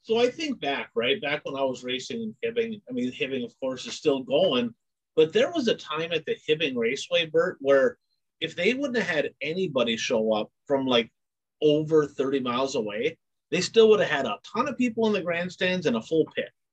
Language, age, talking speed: English, 30-49, 220 wpm